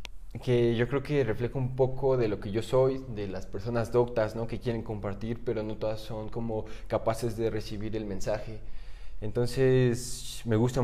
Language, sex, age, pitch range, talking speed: Spanish, male, 20-39, 105-120 Hz, 185 wpm